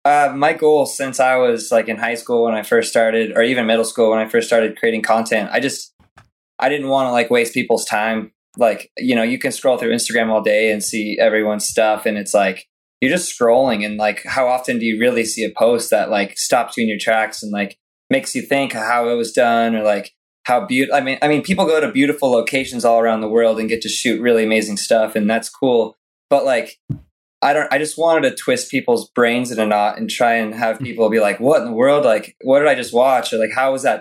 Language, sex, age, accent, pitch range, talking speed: English, male, 20-39, American, 110-130 Hz, 250 wpm